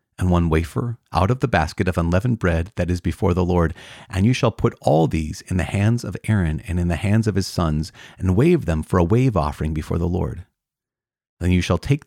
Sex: male